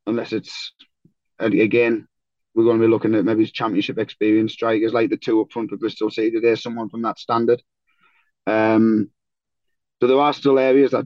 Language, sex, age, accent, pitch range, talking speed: English, male, 20-39, British, 115-140 Hz, 180 wpm